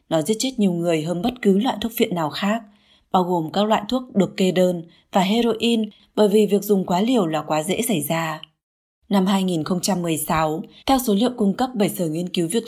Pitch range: 175-225 Hz